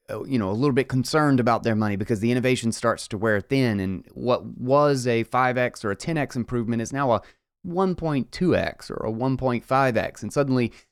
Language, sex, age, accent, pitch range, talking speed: English, male, 30-49, American, 105-125 Hz, 185 wpm